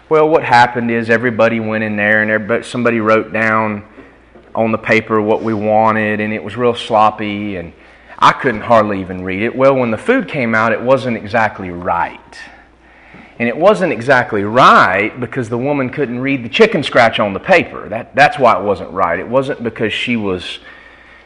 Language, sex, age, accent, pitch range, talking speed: English, male, 30-49, American, 110-140 Hz, 190 wpm